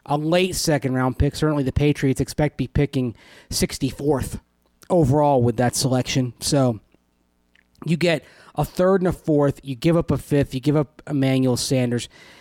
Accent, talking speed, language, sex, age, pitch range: American, 165 wpm, English, male, 30-49, 130-165 Hz